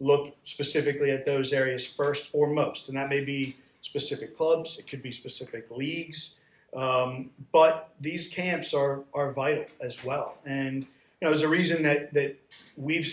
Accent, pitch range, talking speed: American, 135-155 Hz, 170 wpm